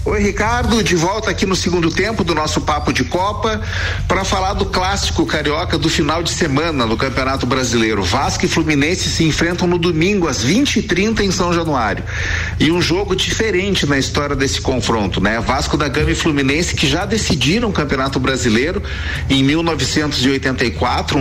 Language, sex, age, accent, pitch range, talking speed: Portuguese, male, 40-59, Brazilian, 110-165 Hz, 165 wpm